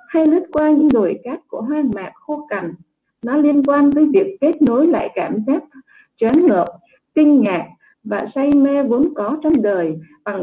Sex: female